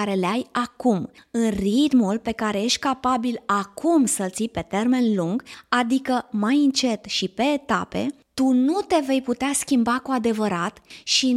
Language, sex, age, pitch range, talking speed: Romanian, female, 20-39, 215-270 Hz, 165 wpm